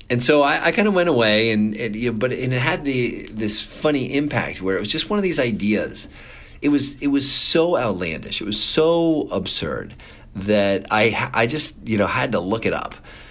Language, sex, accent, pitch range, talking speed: English, male, American, 95-120 Hz, 225 wpm